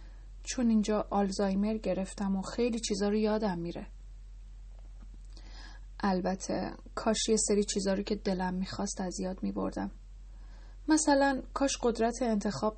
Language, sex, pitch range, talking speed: Persian, female, 170-215 Hz, 120 wpm